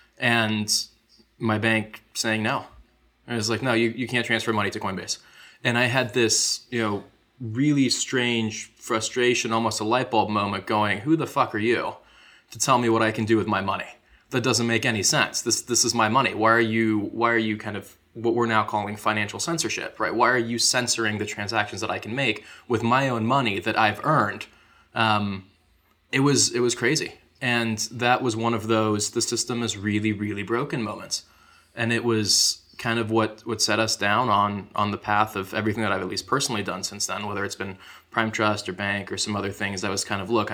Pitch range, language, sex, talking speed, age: 105-115 Hz, English, male, 220 wpm, 20-39